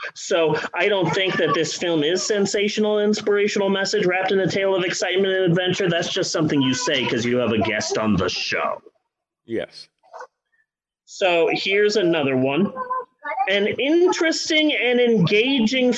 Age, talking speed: 30-49, 155 wpm